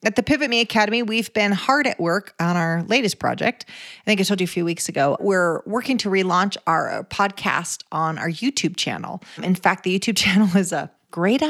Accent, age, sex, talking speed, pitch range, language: American, 40-59, female, 220 wpm, 175-220 Hz, English